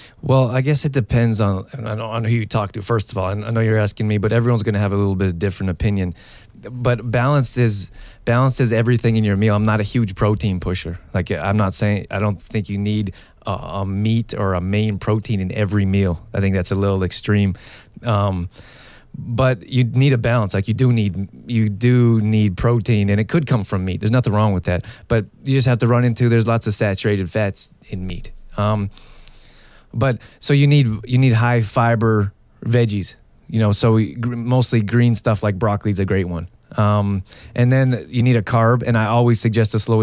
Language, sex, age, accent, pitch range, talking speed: English, male, 20-39, American, 100-120 Hz, 220 wpm